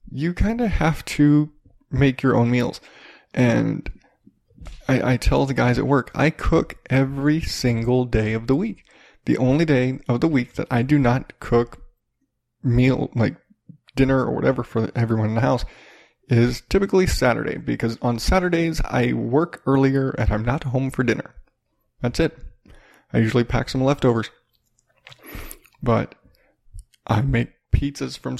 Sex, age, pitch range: male, 20-39, 120-145 Hz